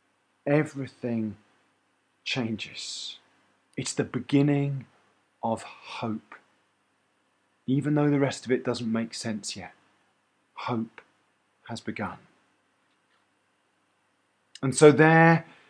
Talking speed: 90 wpm